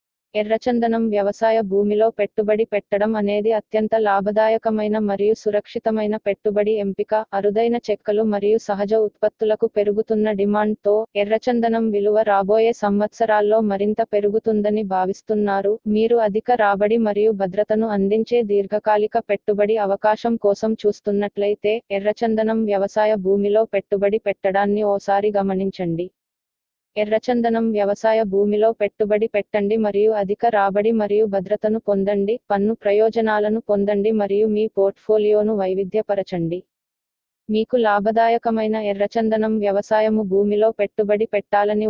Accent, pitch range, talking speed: native, 205-220 Hz, 100 wpm